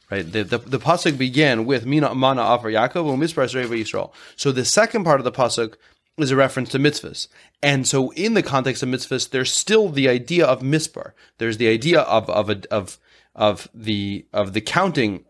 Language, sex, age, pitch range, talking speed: English, male, 30-49, 110-145 Hz, 190 wpm